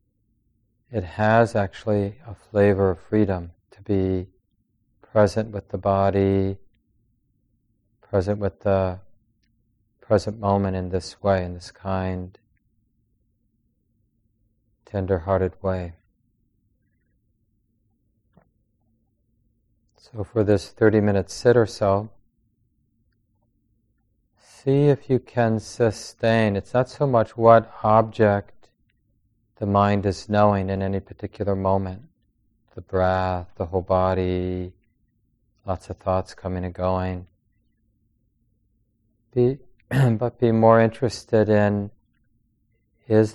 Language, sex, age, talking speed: English, male, 40-59, 95 wpm